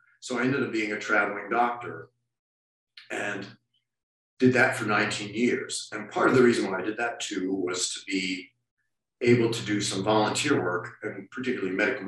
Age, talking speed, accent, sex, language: 50-69, 180 wpm, American, male, English